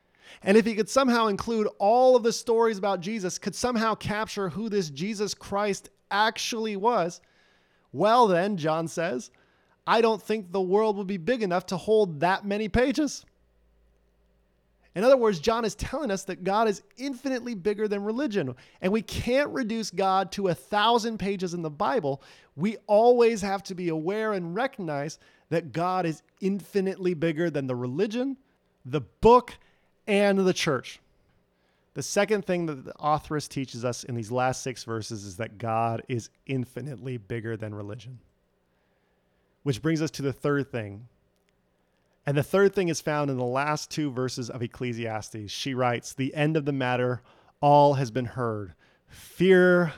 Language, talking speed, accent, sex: English, 165 wpm, American, male